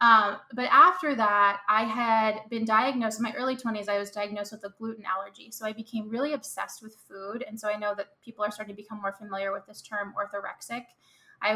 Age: 20-39